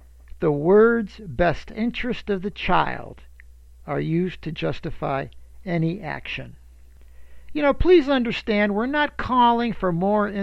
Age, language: 60-79, English